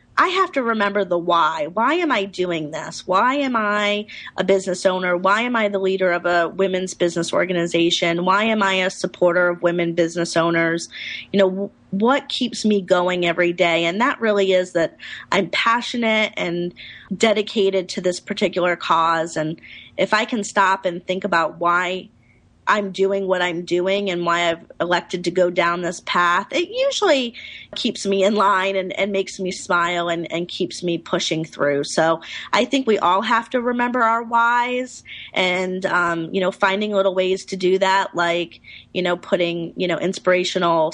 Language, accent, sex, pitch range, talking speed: English, American, female, 170-200 Hz, 180 wpm